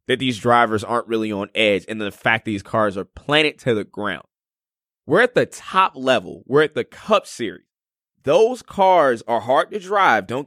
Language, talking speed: English, 195 wpm